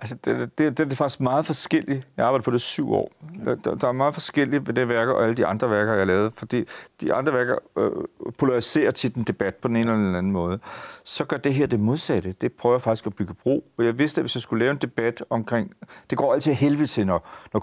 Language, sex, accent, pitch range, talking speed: Danish, male, native, 110-155 Hz, 270 wpm